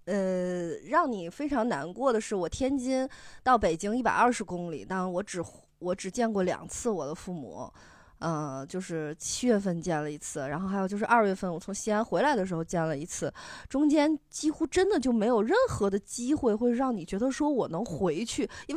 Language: Chinese